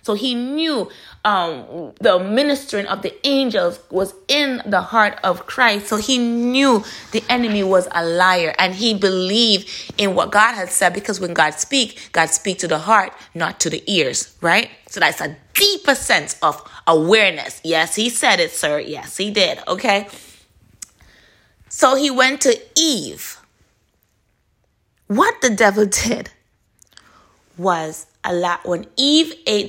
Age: 20-39